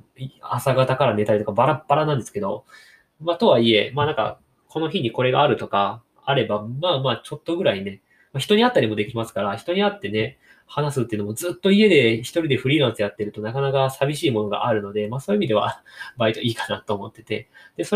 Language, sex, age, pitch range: Japanese, male, 20-39, 105-155 Hz